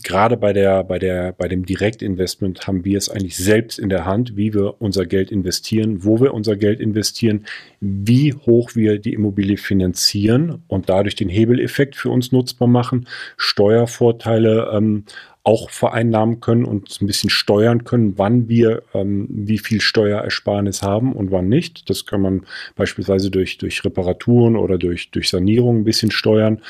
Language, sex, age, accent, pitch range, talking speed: German, male, 40-59, German, 100-115 Hz, 165 wpm